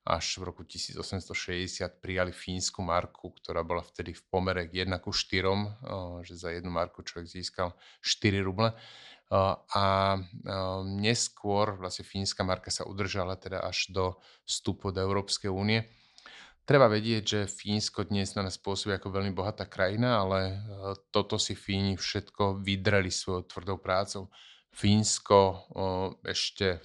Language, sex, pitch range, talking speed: Slovak, male, 95-100 Hz, 140 wpm